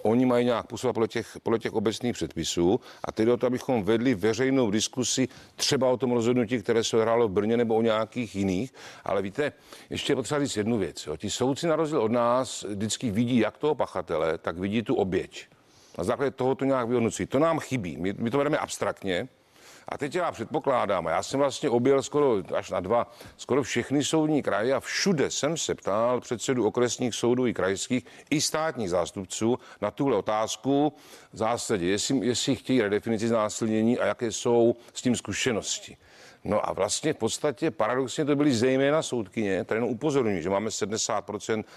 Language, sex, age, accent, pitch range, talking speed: Czech, male, 50-69, native, 110-140 Hz, 180 wpm